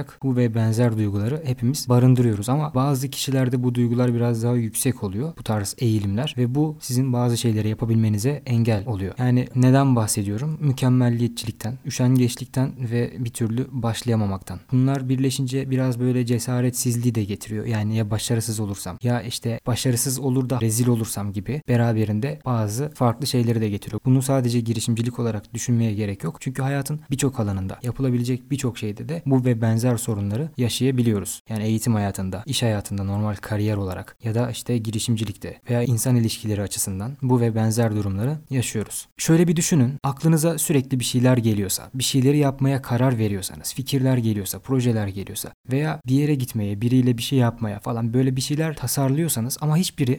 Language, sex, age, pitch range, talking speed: Turkish, male, 20-39, 110-130 Hz, 160 wpm